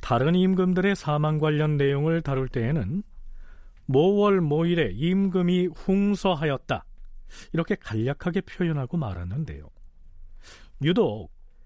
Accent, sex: native, male